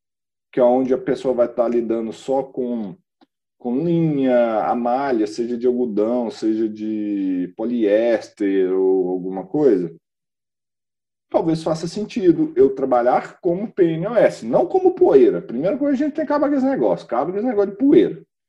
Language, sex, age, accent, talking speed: Portuguese, male, 40-59, Brazilian, 160 wpm